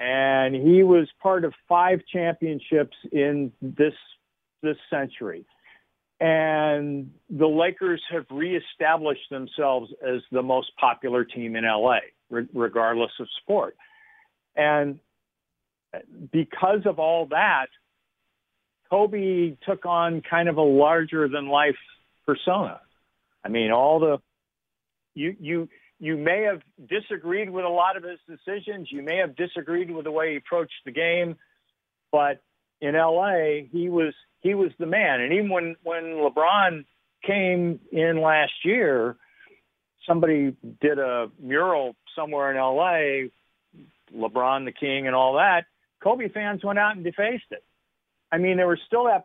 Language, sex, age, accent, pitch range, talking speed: English, male, 50-69, American, 140-185 Hz, 135 wpm